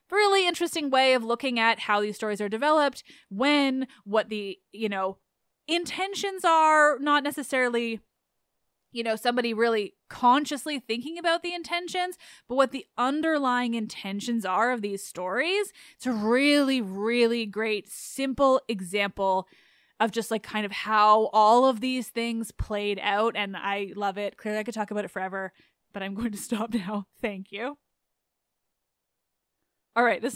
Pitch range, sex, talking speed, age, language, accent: 210-270 Hz, female, 155 wpm, 20-39, English, American